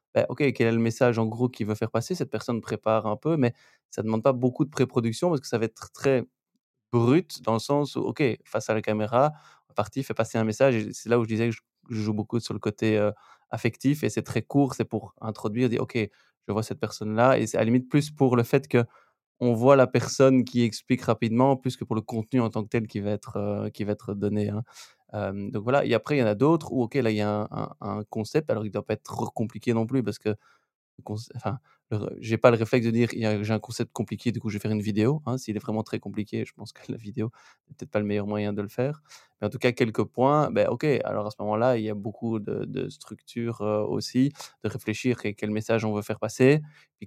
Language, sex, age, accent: French, male, 20-39, French